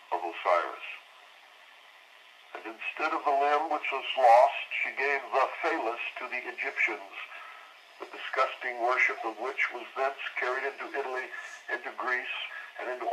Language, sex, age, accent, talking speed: English, male, 60-79, American, 140 wpm